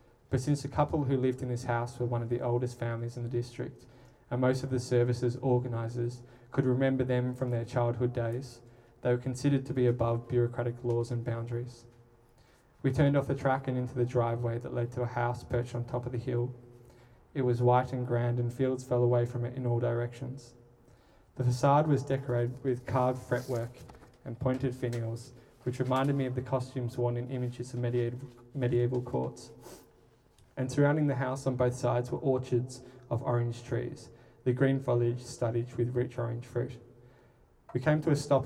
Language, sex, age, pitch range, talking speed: English, male, 20-39, 120-130 Hz, 190 wpm